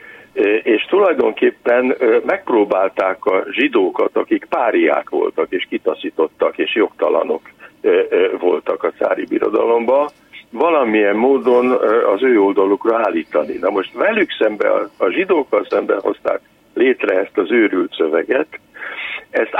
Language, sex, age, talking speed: Hungarian, male, 60-79, 110 wpm